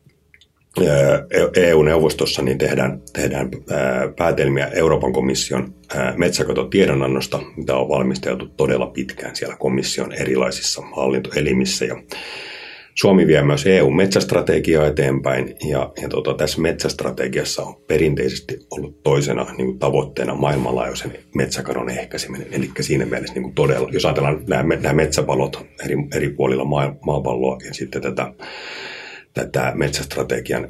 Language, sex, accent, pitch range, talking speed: Finnish, male, native, 65-70 Hz, 110 wpm